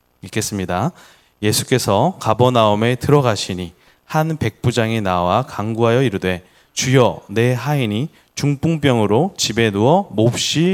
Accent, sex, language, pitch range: native, male, Korean, 105-165 Hz